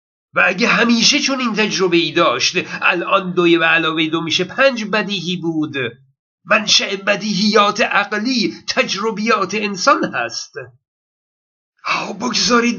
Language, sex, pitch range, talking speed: Persian, male, 175-225 Hz, 115 wpm